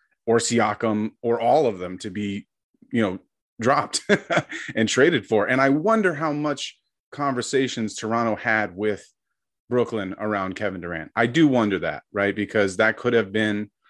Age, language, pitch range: 30-49, English, 100-125 Hz